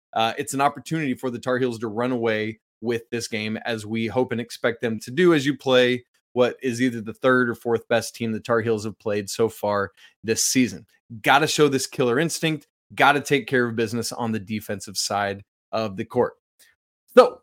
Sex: male